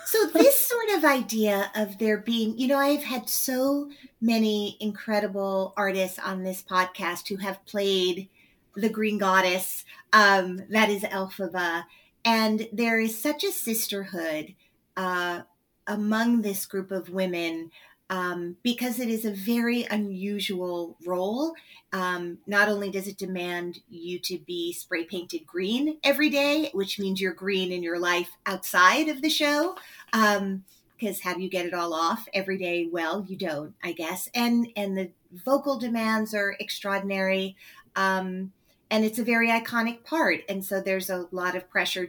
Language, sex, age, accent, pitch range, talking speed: English, female, 40-59, American, 180-225 Hz, 155 wpm